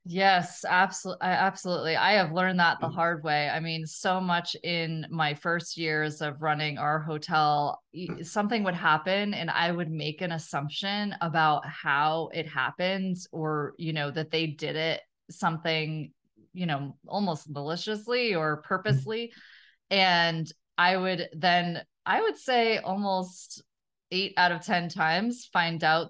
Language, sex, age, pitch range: English, female, 20-39, 155-180 Hz